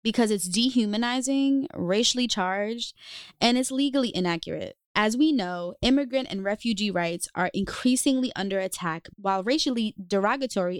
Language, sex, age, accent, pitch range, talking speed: English, female, 20-39, American, 180-230 Hz, 130 wpm